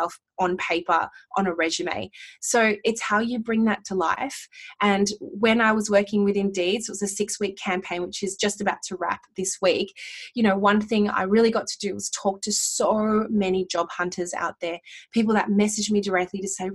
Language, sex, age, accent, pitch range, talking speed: English, female, 20-39, Australian, 190-225 Hz, 210 wpm